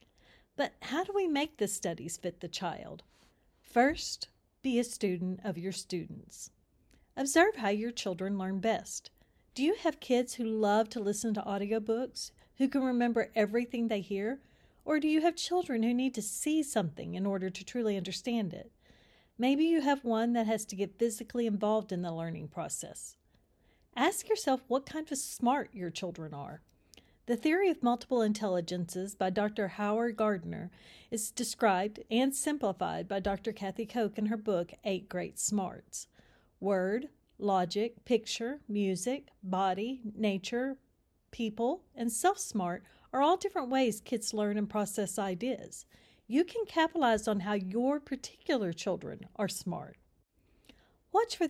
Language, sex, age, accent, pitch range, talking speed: English, female, 40-59, American, 195-255 Hz, 155 wpm